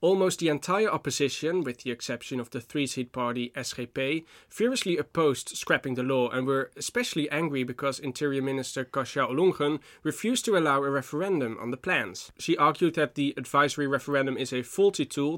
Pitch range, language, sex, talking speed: 130-155 Hz, English, male, 170 wpm